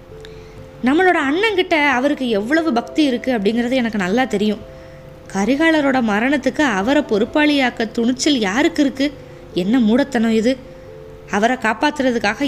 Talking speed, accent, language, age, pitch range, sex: 105 wpm, native, Tamil, 20-39, 215-275 Hz, female